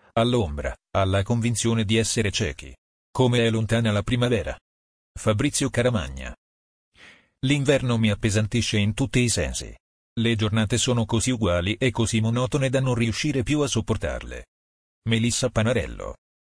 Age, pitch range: 40-59, 100-120 Hz